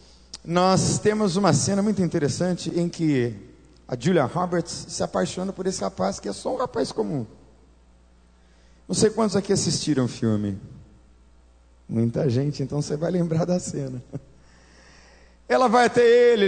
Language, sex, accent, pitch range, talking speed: Portuguese, male, Brazilian, 125-200 Hz, 150 wpm